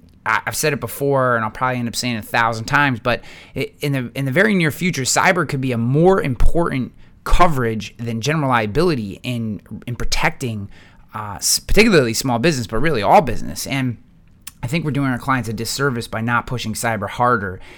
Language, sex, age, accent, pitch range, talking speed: English, male, 30-49, American, 110-140 Hz, 190 wpm